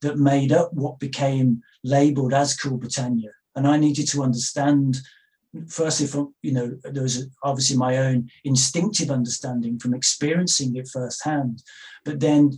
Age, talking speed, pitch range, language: 40-59, 150 wpm, 125-145 Hz, English